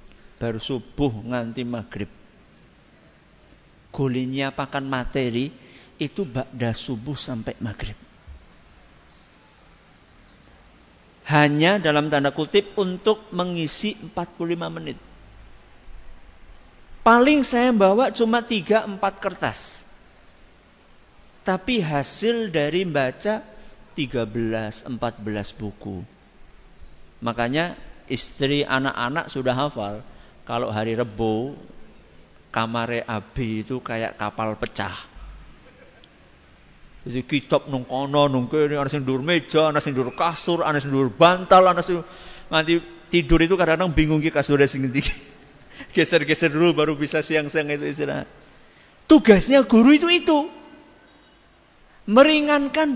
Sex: male